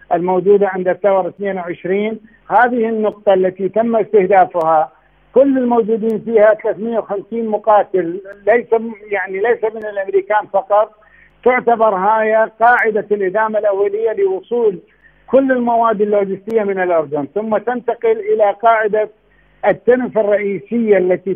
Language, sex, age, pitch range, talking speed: Arabic, male, 50-69, 195-225 Hz, 105 wpm